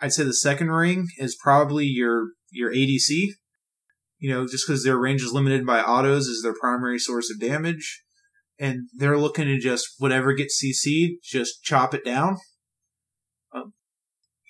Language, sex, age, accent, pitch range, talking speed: English, male, 20-39, American, 120-145 Hz, 160 wpm